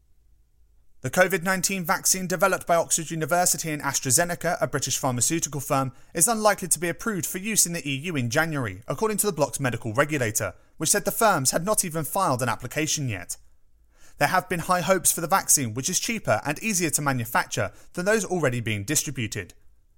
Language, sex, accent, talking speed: English, male, British, 185 wpm